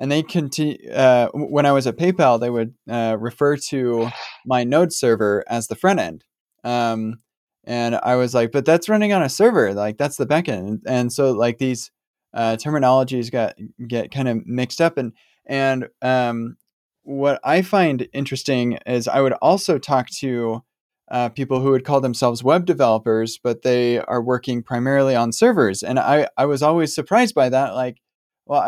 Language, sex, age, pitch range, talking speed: English, male, 20-39, 120-150 Hz, 180 wpm